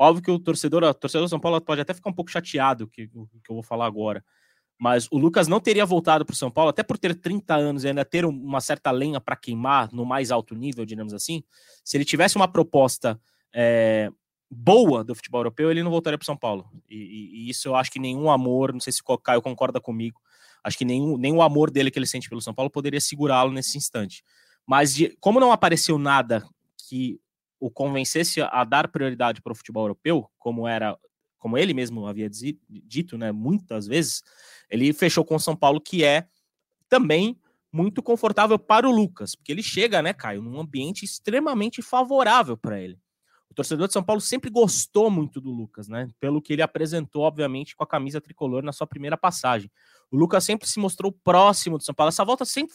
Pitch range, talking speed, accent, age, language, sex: 125-175 Hz, 210 wpm, Brazilian, 20-39, Portuguese, male